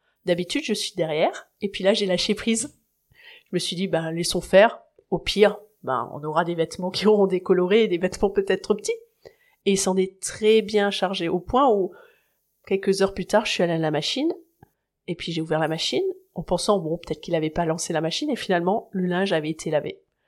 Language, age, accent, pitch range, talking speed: French, 30-49, French, 170-205 Hz, 225 wpm